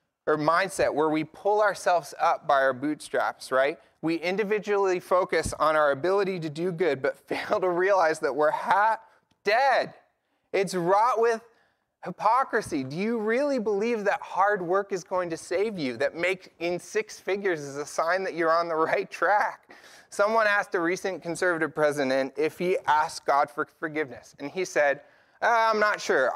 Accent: American